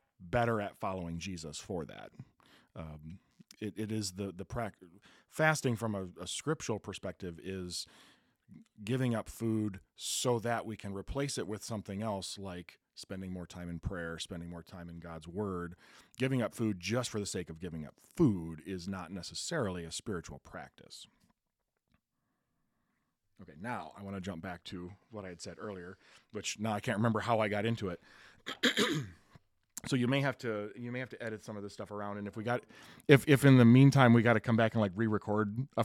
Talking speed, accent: 195 wpm, American